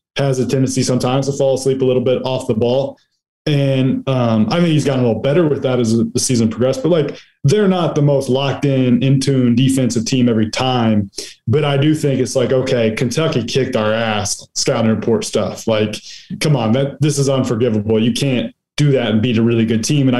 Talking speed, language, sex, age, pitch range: 225 wpm, English, male, 20-39, 115-135 Hz